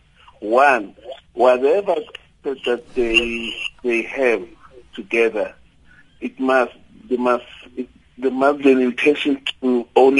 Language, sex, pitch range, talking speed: English, male, 115-145 Hz, 110 wpm